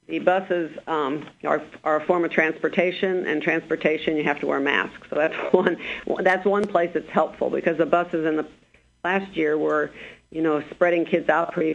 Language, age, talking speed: English, 50-69, 195 wpm